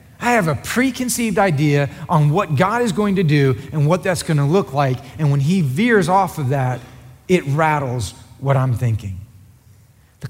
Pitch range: 130-195 Hz